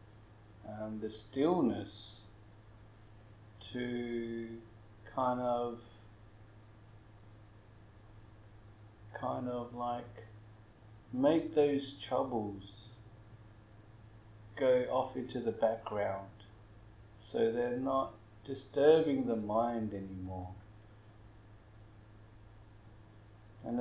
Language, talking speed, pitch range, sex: English, 65 wpm, 105-120 Hz, male